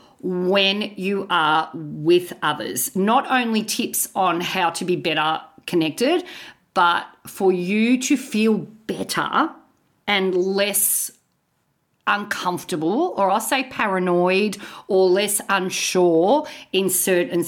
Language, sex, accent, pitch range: English, female, Australian, 165-235 Hz